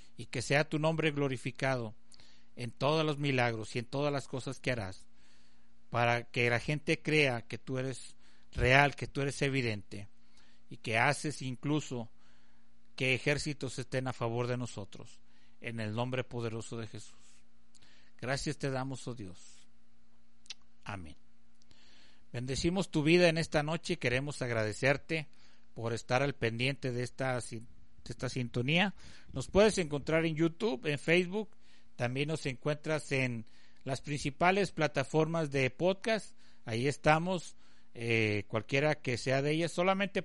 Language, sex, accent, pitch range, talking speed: Spanish, male, Mexican, 115-155 Hz, 140 wpm